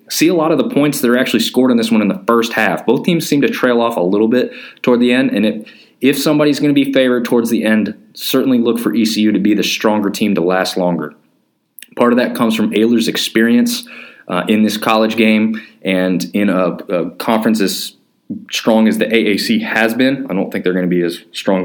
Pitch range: 95-115 Hz